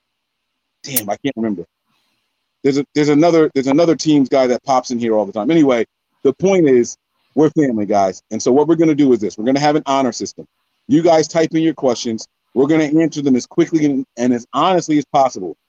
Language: English